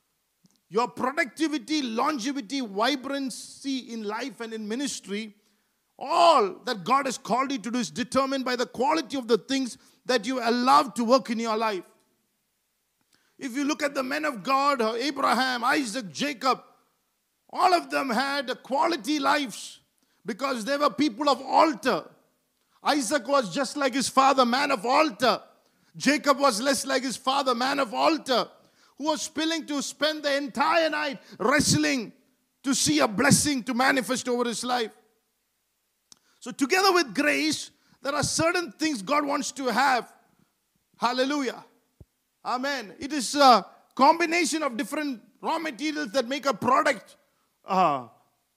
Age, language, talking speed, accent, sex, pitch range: 50-69, English, 150 wpm, Indian, male, 245-290 Hz